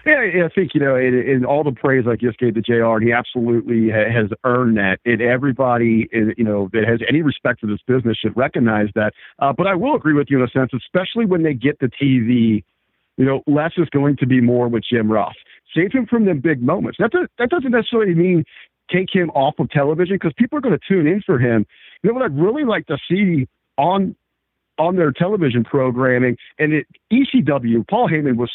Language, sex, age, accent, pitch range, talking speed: English, male, 50-69, American, 120-170 Hz, 220 wpm